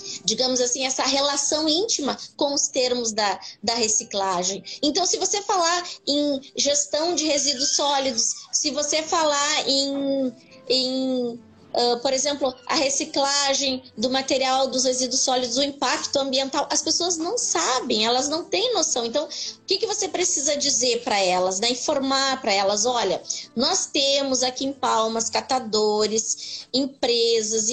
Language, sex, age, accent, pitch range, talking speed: Portuguese, female, 20-39, Brazilian, 235-300 Hz, 145 wpm